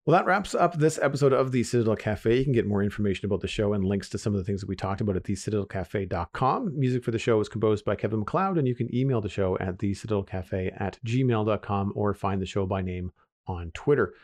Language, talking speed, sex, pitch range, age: English, 250 wpm, male, 100-125 Hz, 40-59